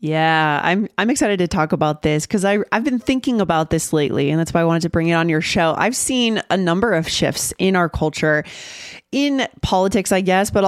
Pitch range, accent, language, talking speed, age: 165-210 Hz, American, English, 225 wpm, 20-39